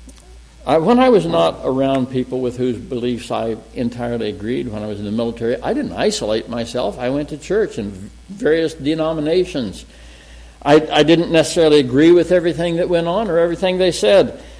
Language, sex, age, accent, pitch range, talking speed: English, male, 60-79, American, 115-180 Hz, 175 wpm